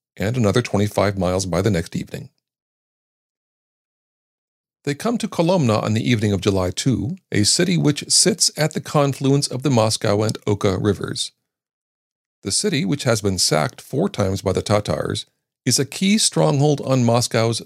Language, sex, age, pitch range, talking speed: English, male, 40-59, 100-145 Hz, 165 wpm